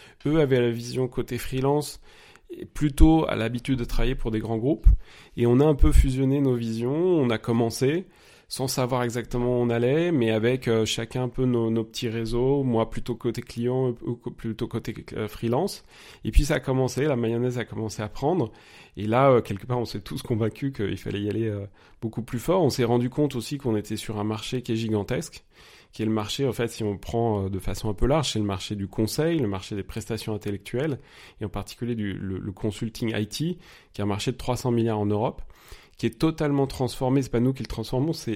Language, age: French, 30-49